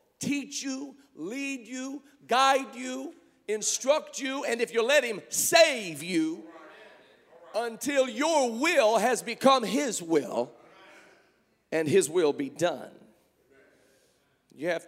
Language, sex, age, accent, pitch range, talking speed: English, male, 50-69, American, 180-295 Hz, 115 wpm